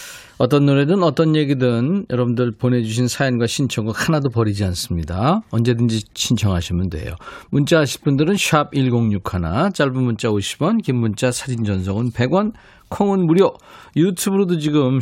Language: Korean